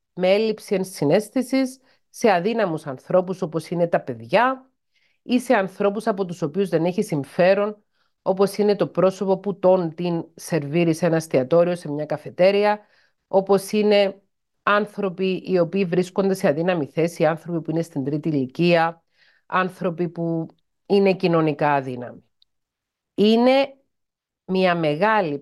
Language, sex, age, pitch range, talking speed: Greek, female, 40-59, 155-200 Hz, 130 wpm